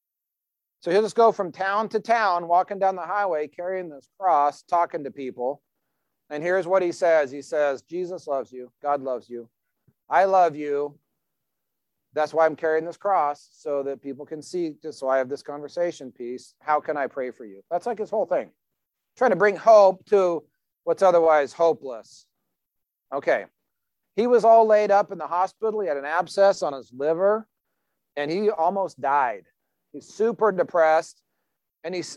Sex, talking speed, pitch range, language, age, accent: male, 175 wpm, 145-200 Hz, English, 40-59, American